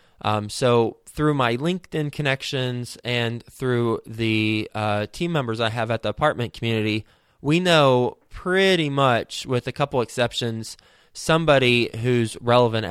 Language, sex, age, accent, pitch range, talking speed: English, male, 20-39, American, 110-135 Hz, 135 wpm